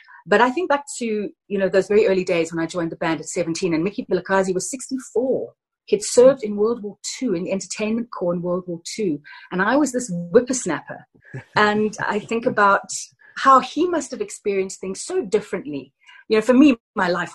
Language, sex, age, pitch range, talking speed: English, female, 40-59, 175-245 Hz, 210 wpm